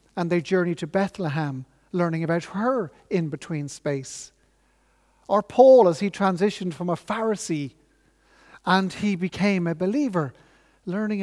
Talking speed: 130 wpm